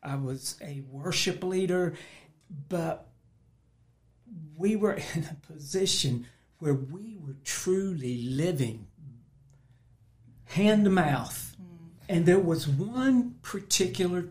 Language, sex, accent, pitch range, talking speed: English, male, American, 130-170 Hz, 100 wpm